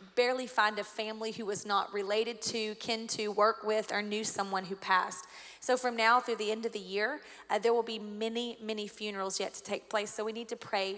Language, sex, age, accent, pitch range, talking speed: English, female, 30-49, American, 200-230 Hz, 235 wpm